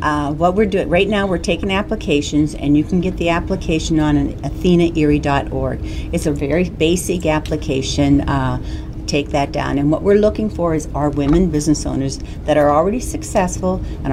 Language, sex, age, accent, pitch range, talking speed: English, female, 60-79, American, 140-170 Hz, 180 wpm